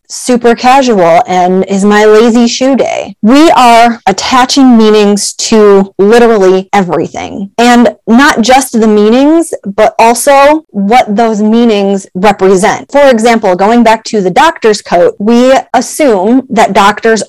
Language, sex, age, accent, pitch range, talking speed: English, female, 30-49, American, 200-240 Hz, 130 wpm